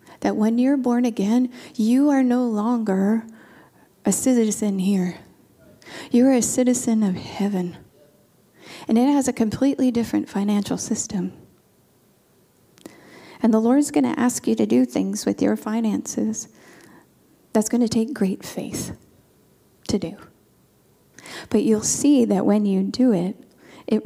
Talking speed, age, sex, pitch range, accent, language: 140 wpm, 40-59, female, 190-245 Hz, American, English